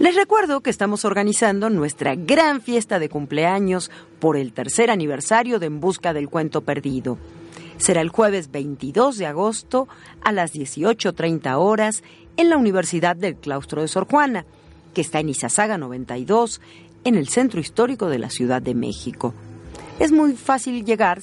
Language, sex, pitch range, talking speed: Spanish, female, 145-235 Hz, 160 wpm